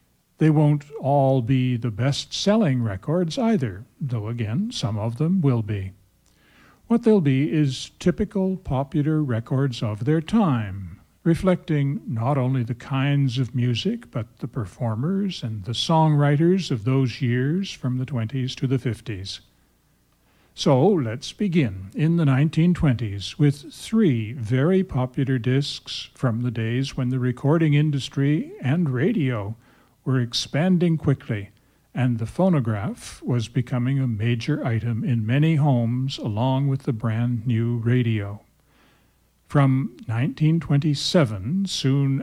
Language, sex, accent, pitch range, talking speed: English, male, American, 120-150 Hz, 130 wpm